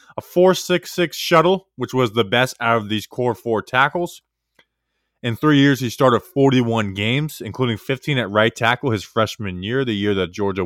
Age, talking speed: 20-39, 195 wpm